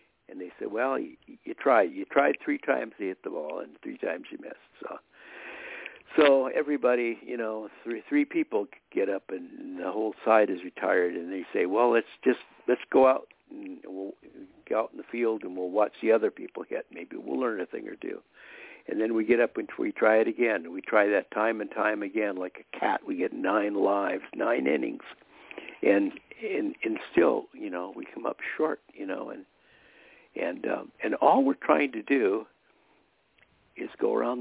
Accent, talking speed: American, 200 wpm